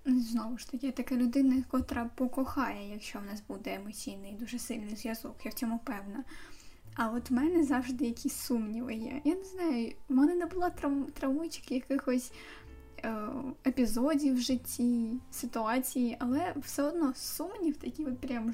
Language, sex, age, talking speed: Ukrainian, female, 10-29, 155 wpm